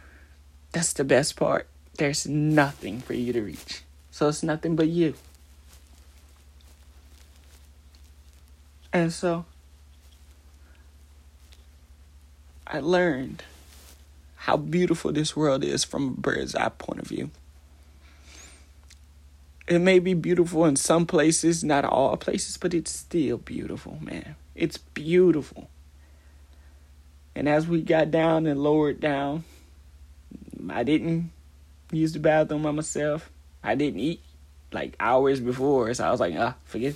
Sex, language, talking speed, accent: male, English, 120 wpm, American